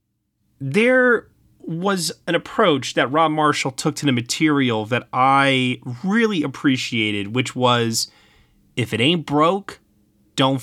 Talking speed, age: 125 wpm, 30-49